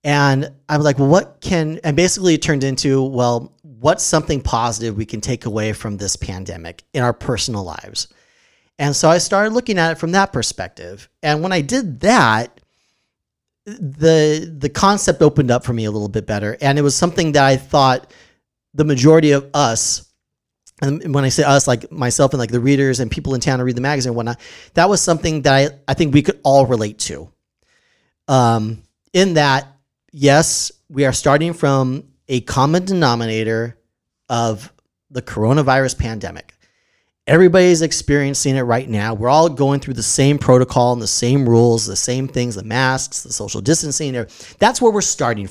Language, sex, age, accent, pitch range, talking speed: English, male, 40-59, American, 120-160 Hz, 185 wpm